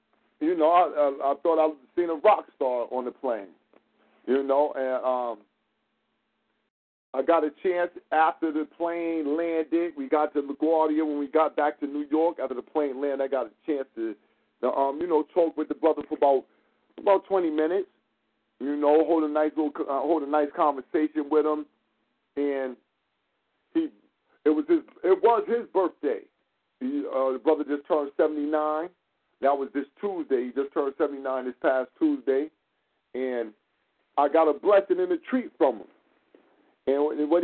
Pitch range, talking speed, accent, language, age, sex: 140-180 Hz, 180 wpm, American, English, 40-59, male